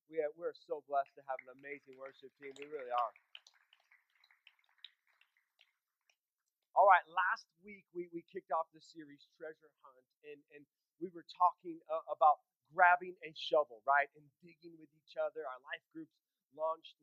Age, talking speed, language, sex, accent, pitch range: 30-49, 160 wpm, English, male, American, 145-170 Hz